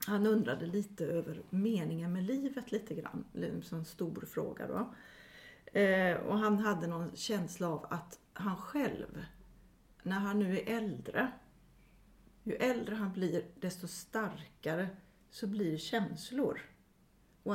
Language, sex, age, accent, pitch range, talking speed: English, female, 40-59, Swedish, 175-220 Hz, 125 wpm